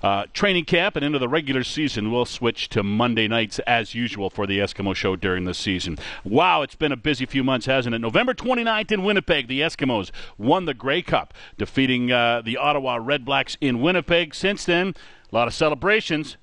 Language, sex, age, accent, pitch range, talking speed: English, male, 50-69, American, 125-165 Hz, 200 wpm